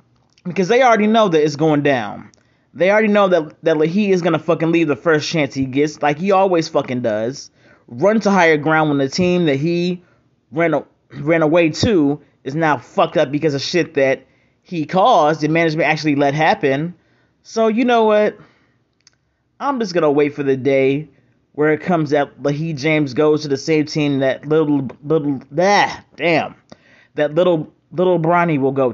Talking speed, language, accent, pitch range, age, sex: 190 wpm, English, American, 145-180 Hz, 30-49, male